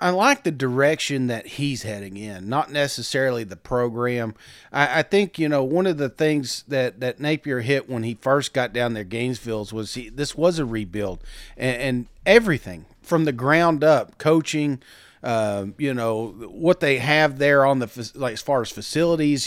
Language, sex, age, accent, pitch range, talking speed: English, male, 40-59, American, 120-160 Hz, 185 wpm